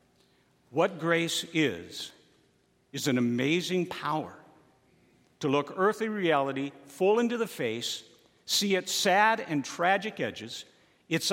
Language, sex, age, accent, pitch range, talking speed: English, male, 60-79, American, 125-180 Hz, 115 wpm